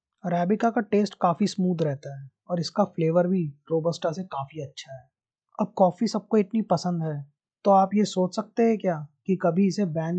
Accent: native